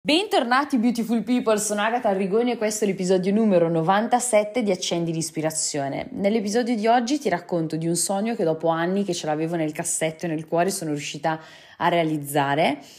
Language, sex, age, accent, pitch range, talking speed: Italian, female, 20-39, native, 175-235 Hz, 175 wpm